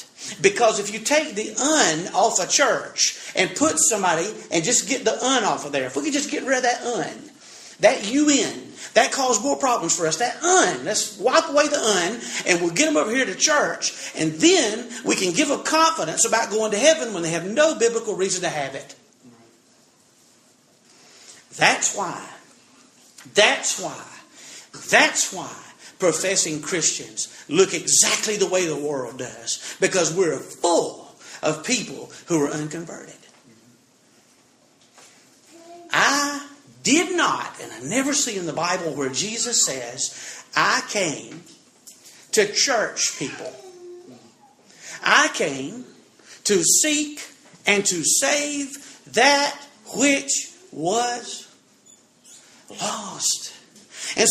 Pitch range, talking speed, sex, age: 185-295 Hz, 140 wpm, male, 40-59